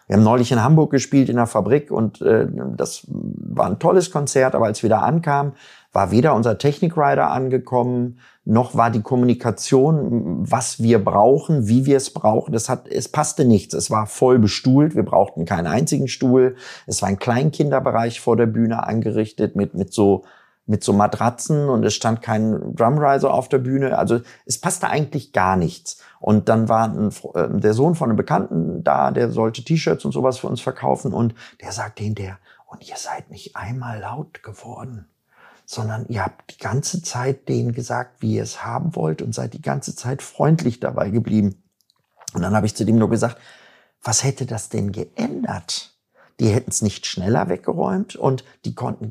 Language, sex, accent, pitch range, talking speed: German, male, German, 110-135 Hz, 185 wpm